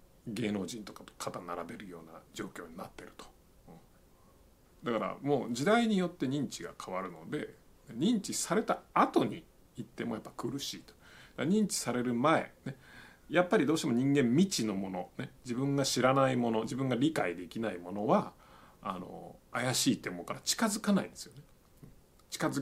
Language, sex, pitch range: Japanese, male, 115-165 Hz